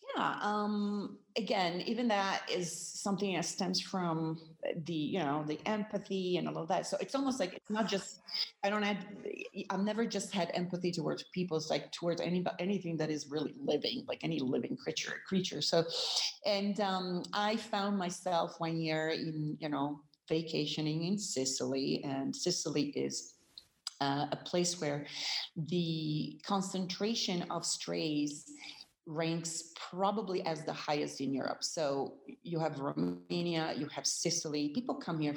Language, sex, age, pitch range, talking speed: English, female, 40-59, 155-205 Hz, 155 wpm